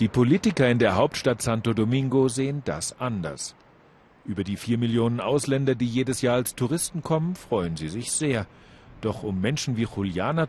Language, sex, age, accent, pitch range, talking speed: German, male, 40-59, German, 105-145 Hz, 170 wpm